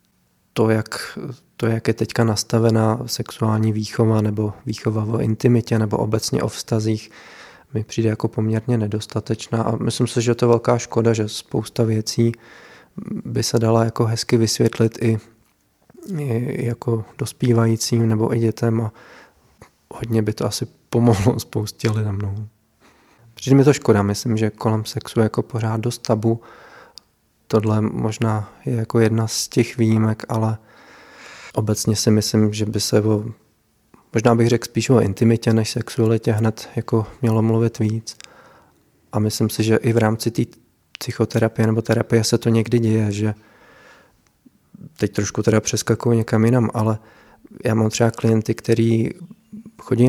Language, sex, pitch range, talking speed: Czech, male, 110-120 Hz, 150 wpm